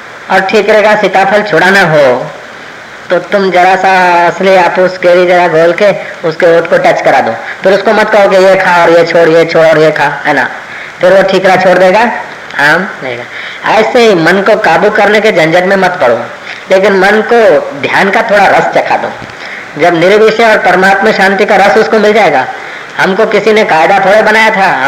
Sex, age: female, 20-39